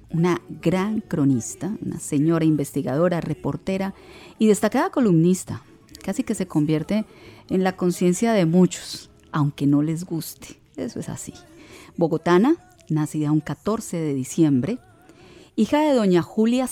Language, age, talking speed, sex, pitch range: Spanish, 40-59, 130 wpm, female, 150-210 Hz